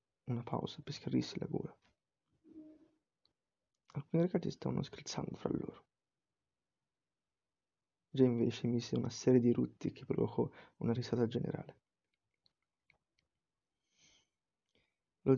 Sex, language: male, Italian